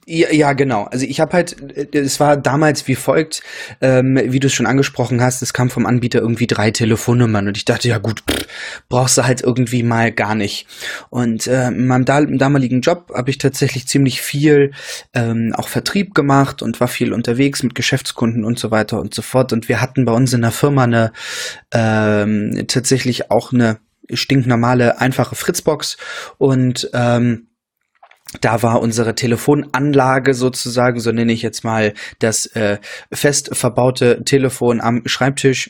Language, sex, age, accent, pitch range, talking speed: German, male, 20-39, German, 115-135 Hz, 170 wpm